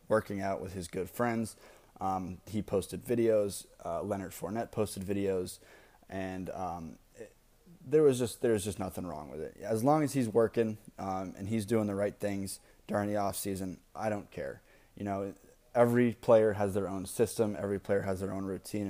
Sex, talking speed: male, 190 wpm